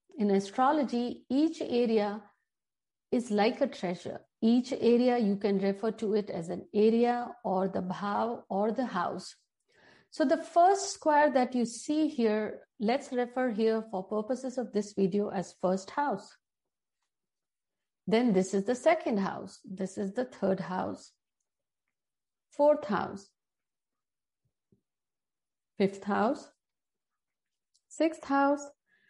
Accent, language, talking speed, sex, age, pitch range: native, Hindi, 125 wpm, female, 50-69, 200-275 Hz